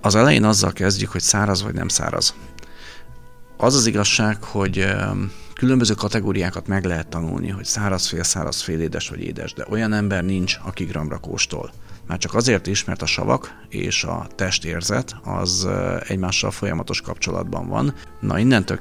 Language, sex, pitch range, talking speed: Hungarian, male, 90-110 Hz, 160 wpm